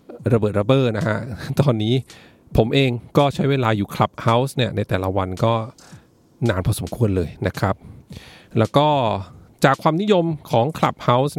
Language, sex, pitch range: English, male, 105-135 Hz